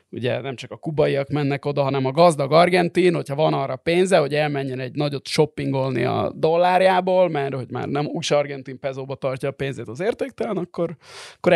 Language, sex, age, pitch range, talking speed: Hungarian, male, 20-39, 135-165 Hz, 185 wpm